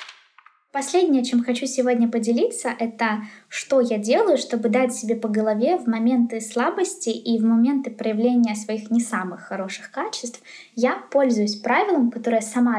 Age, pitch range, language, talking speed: 20-39, 220-255 Hz, Russian, 145 wpm